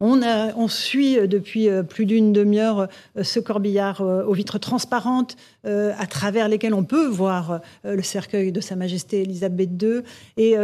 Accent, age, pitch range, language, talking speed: French, 50-69, 190-220 Hz, French, 150 wpm